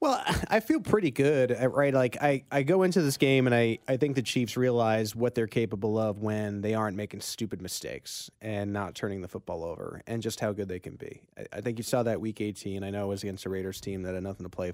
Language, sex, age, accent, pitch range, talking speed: English, male, 30-49, American, 100-125 Hz, 260 wpm